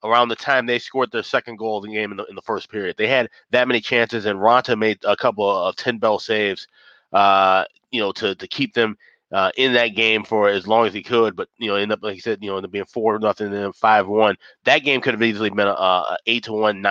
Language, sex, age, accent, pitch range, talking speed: English, male, 30-49, American, 100-115 Hz, 265 wpm